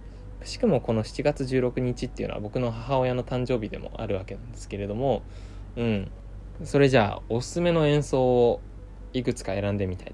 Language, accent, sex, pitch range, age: Japanese, native, male, 100-125 Hz, 20-39